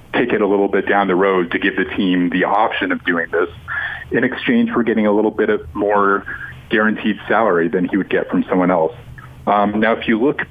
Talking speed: 230 wpm